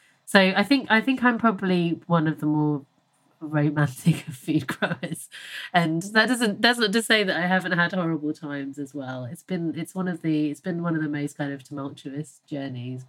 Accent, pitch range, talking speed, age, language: British, 130-170 Hz, 210 wpm, 30-49, English